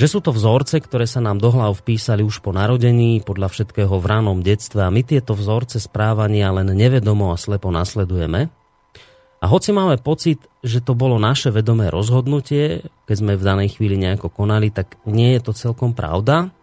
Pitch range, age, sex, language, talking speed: 100-120 Hz, 30-49, male, Slovak, 180 wpm